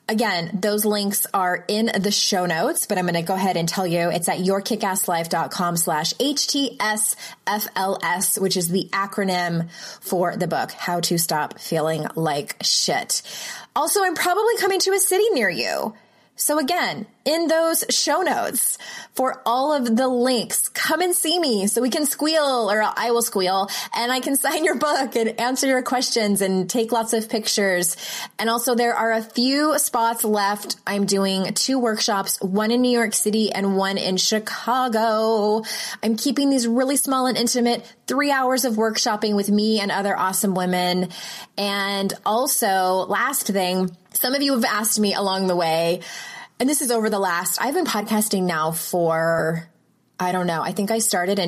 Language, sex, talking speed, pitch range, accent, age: English, female, 175 wpm, 185-245 Hz, American, 20-39